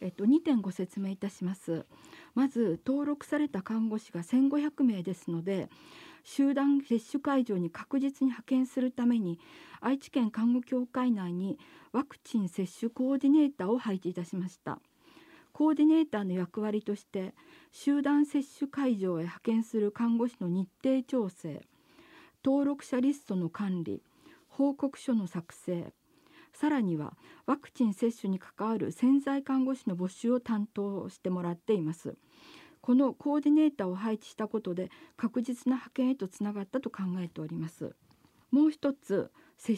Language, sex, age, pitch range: Japanese, female, 40-59, 195-280 Hz